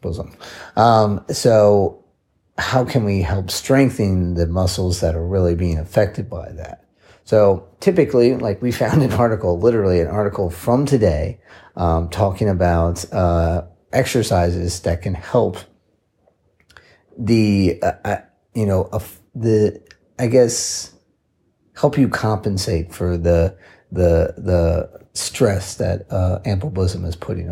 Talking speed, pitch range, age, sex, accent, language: 125 wpm, 90-105 Hz, 30-49, male, American, English